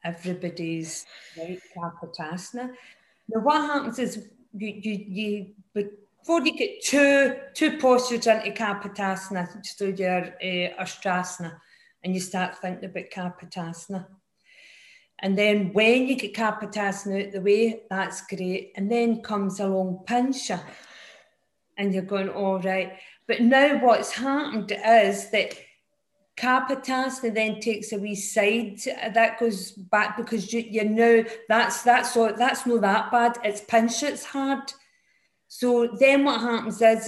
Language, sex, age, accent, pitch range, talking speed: English, female, 40-59, British, 190-235 Hz, 140 wpm